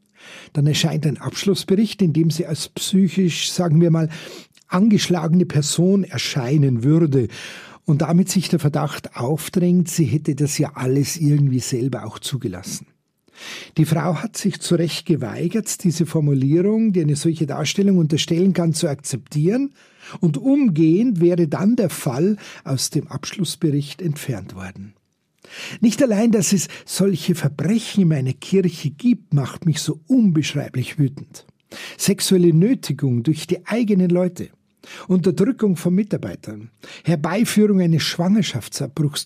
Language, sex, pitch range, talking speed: German, male, 150-190 Hz, 130 wpm